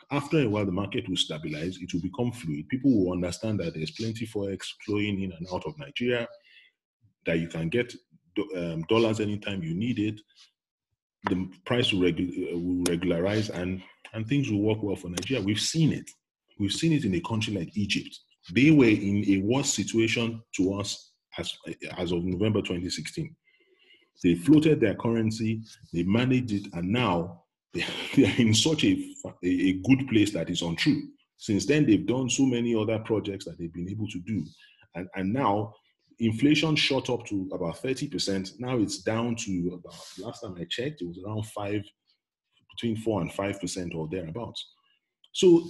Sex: male